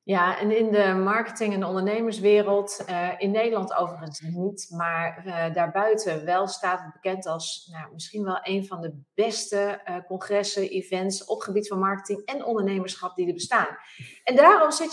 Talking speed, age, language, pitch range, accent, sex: 160 wpm, 30-49, Dutch, 185-225 Hz, Dutch, female